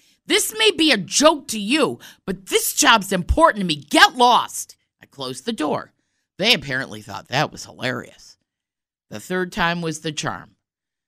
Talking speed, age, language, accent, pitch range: 170 wpm, 50-69, English, American, 150-240 Hz